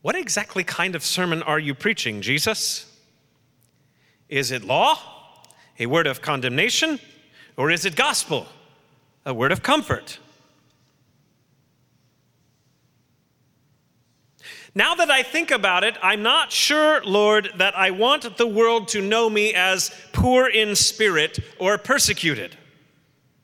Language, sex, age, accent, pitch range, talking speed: English, male, 40-59, American, 155-225 Hz, 125 wpm